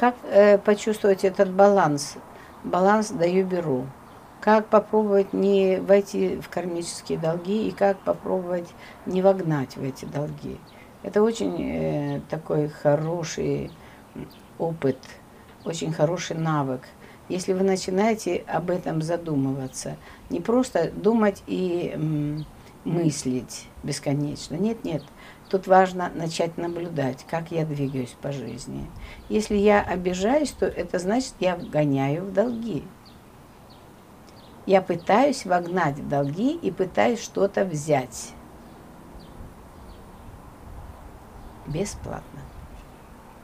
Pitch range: 145-205 Hz